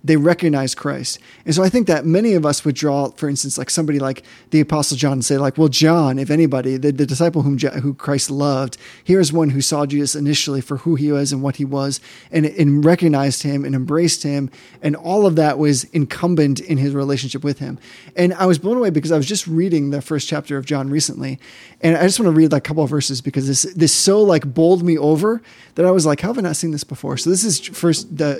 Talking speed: 250 wpm